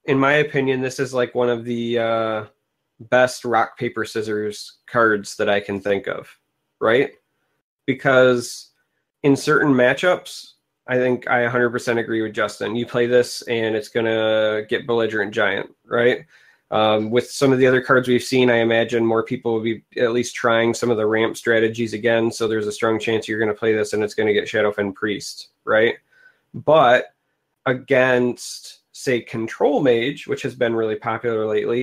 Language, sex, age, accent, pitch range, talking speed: English, male, 20-39, American, 110-135 Hz, 180 wpm